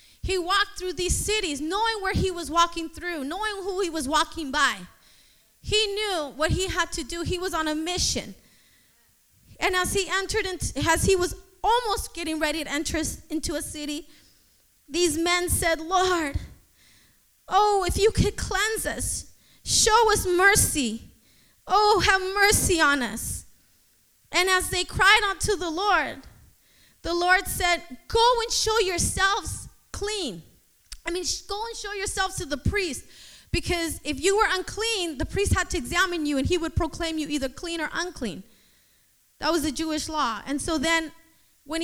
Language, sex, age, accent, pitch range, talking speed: English, female, 20-39, American, 320-395 Hz, 165 wpm